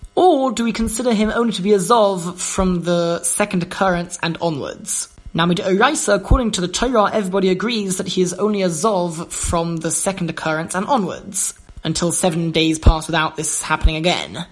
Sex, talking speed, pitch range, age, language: male, 180 wpm, 170-205 Hz, 20-39, English